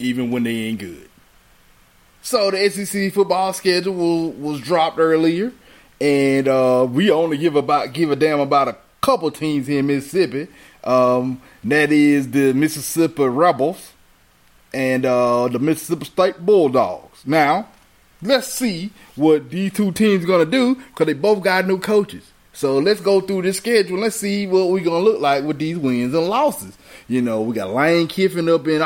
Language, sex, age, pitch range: English, male, 20-39, 130-190 Hz